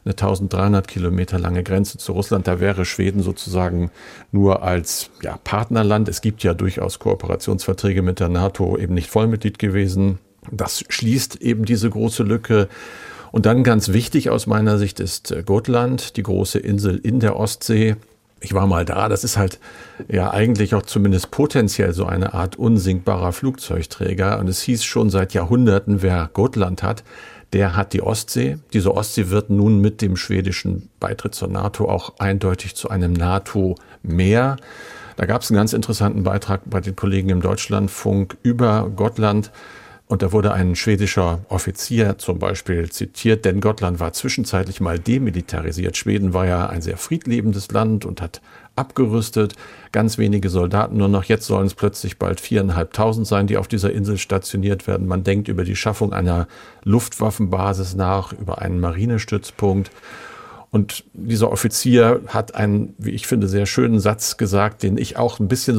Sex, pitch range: male, 95-110 Hz